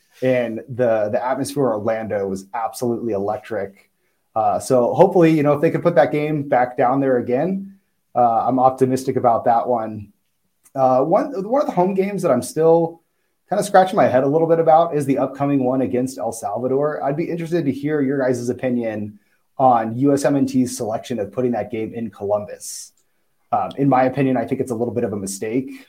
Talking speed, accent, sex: 200 wpm, American, male